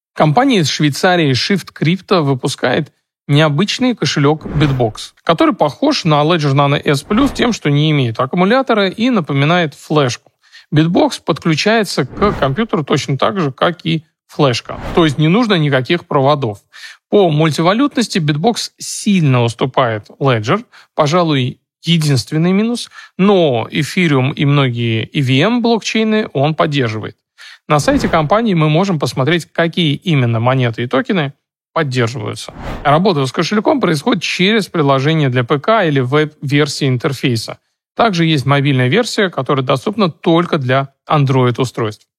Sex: male